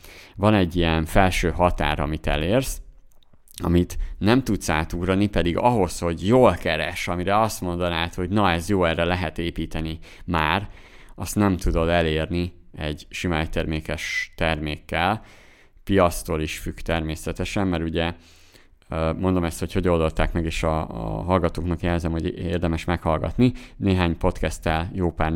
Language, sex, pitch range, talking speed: Hungarian, male, 80-95 Hz, 135 wpm